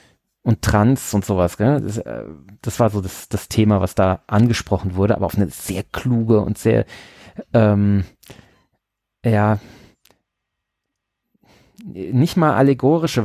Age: 30-49